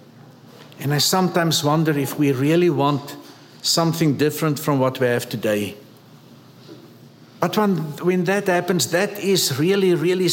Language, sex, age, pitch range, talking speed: English, male, 60-79, 140-175 Hz, 140 wpm